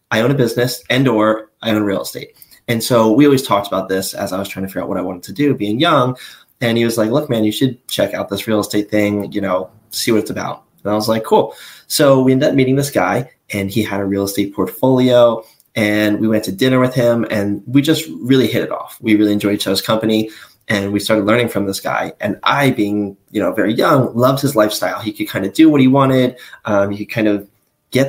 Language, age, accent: English, 20-39, American